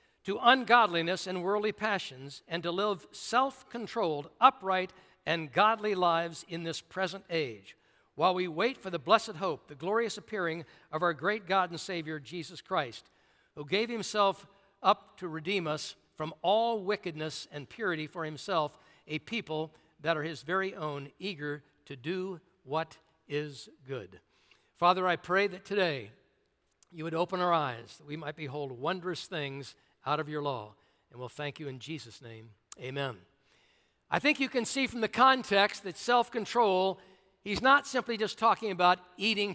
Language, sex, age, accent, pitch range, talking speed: English, male, 60-79, American, 160-210 Hz, 160 wpm